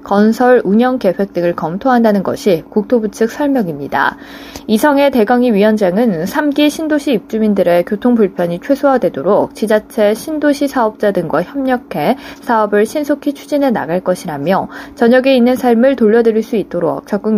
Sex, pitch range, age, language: female, 195-275 Hz, 20-39, Korean